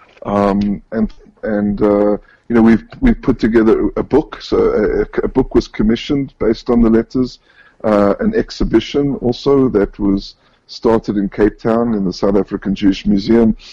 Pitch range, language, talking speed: 100-115 Hz, English, 165 wpm